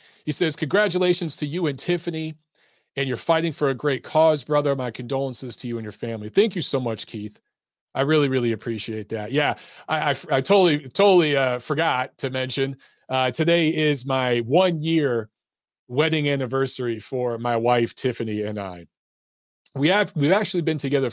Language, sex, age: English, male, 40-59